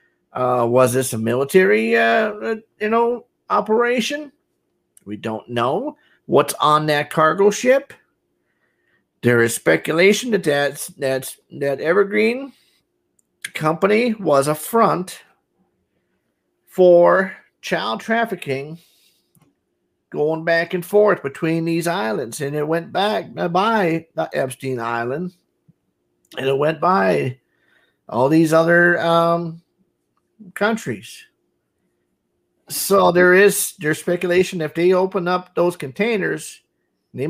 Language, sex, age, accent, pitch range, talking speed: English, male, 50-69, American, 140-195 Hz, 105 wpm